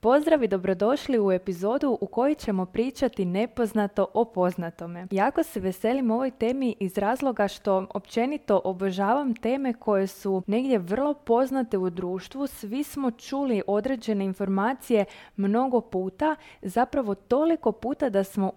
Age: 20-39